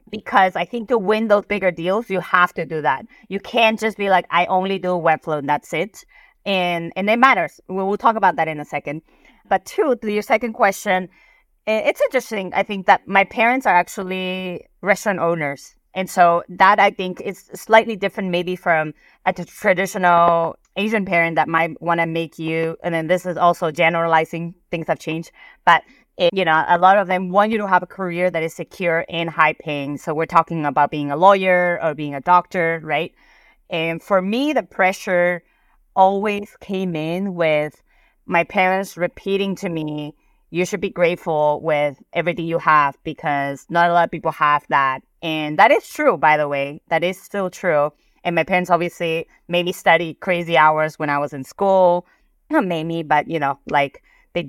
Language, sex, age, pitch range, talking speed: English, female, 30-49, 165-195 Hz, 195 wpm